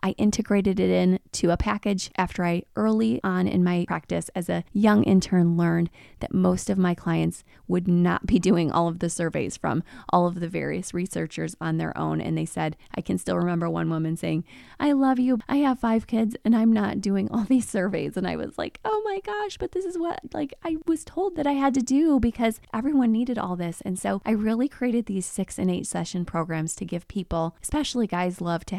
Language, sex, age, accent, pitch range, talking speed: English, female, 20-39, American, 175-230 Hz, 225 wpm